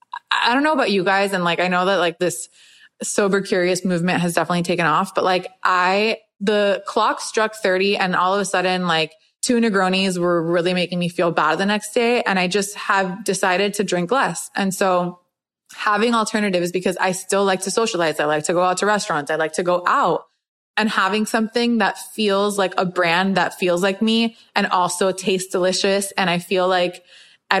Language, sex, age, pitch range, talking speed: English, female, 20-39, 180-205 Hz, 205 wpm